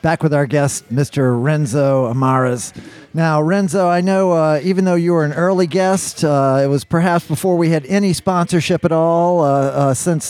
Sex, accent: male, American